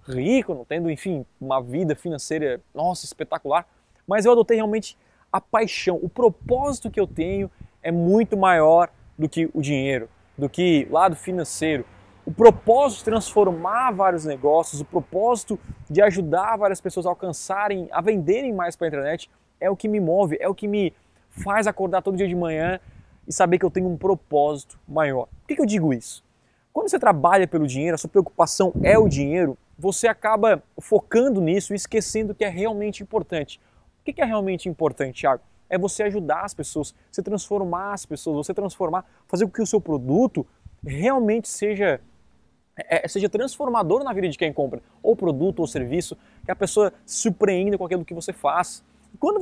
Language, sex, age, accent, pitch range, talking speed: Portuguese, male, 20-39, Brazilian, 155-210 Hz, 180 wpm